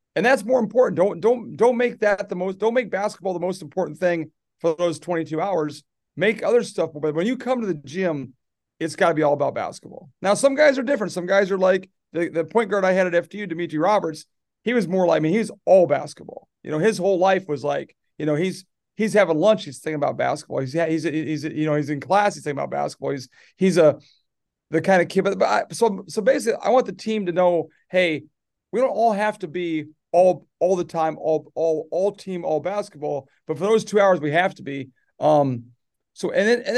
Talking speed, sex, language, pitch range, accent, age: 245 wpm, male, English, 155-195 Hz, American, 40-59